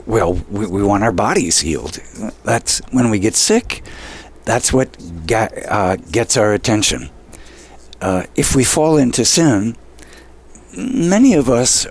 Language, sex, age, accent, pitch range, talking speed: English, male, 60-79, American, 100-135 Hz, 140 wpm